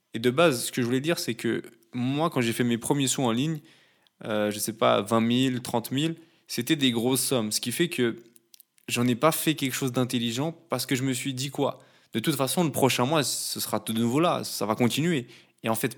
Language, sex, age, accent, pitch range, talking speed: French, male, 20-39, French, 120-150 Hz, 255 wpm